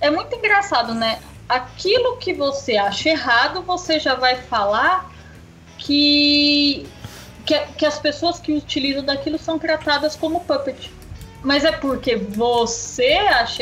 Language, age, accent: Portuguese, 20-39, Brazilian